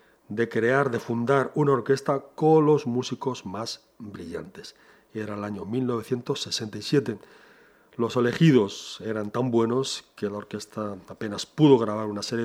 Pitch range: 105-130 Hz